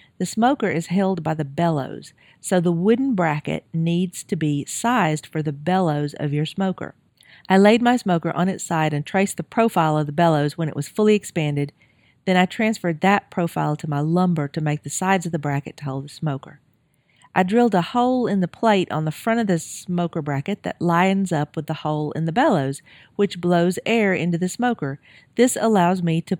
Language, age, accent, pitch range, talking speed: English, 40-59, American, 150-195 Hz, 210 wpm